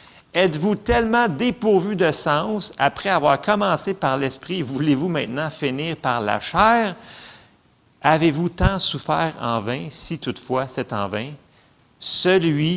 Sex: male